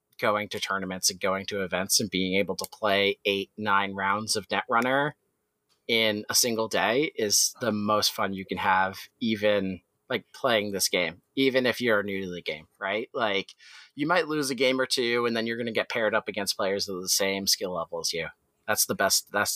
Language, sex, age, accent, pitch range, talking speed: English, male, 30-49, American, 100-125 Hz, 220 wpm